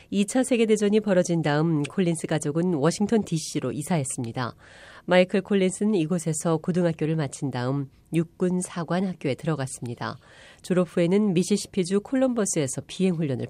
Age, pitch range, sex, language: 40-59, 145-200 Hz, female, Korean